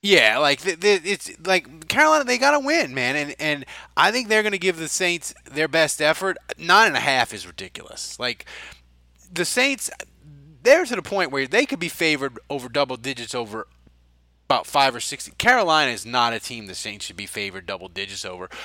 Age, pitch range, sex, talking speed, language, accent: 20-39, 110-155 Hz, male, 205 wpm, English, American